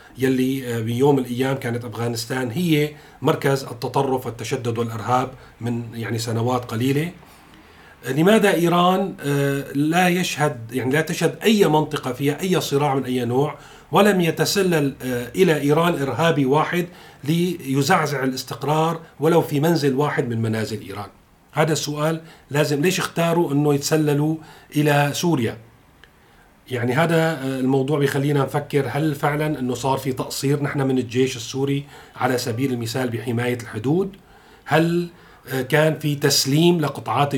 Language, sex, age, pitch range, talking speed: Arabic, male, 40-59, 125-155 Hz, 125 wpm